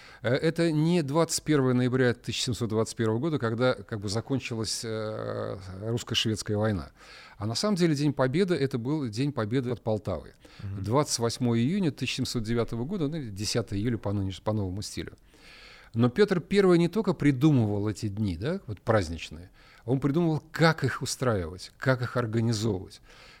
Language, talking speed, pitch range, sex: Russian, 135 wpm, 110-155 Hz, male